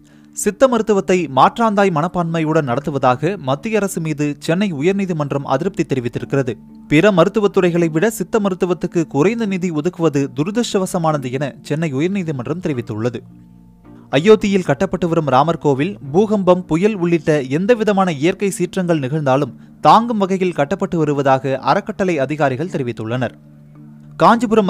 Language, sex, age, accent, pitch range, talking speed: Tamil, male, 30-49, native, 130-190 Hz, 105 wpm